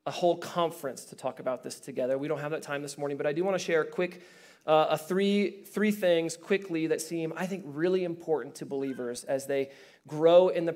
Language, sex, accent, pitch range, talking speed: English, male, American, 155-190 Hz, 235 wpm